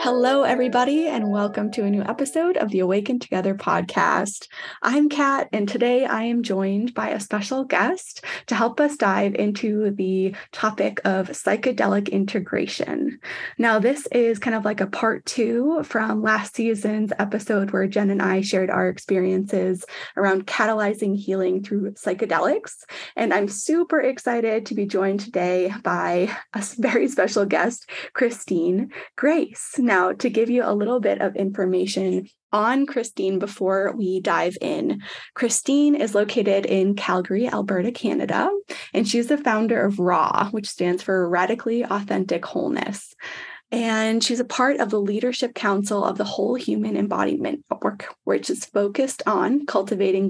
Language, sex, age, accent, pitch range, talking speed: English, female, 20-39, American, 195-250 Hz, 150 wpm